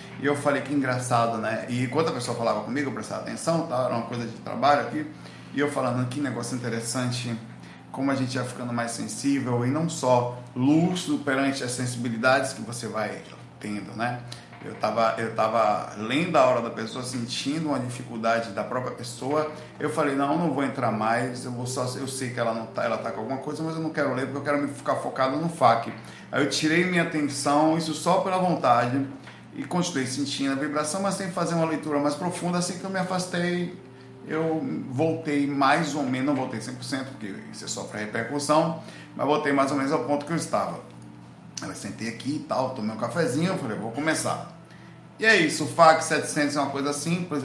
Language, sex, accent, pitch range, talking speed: Portuguese, male, Brazilian, 120-150 Hz, 205 wpm